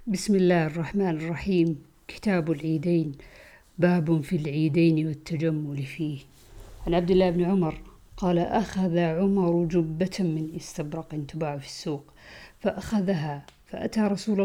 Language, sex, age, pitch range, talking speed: Arabic, female, 50-69, 160-195 Hz, 115 wpm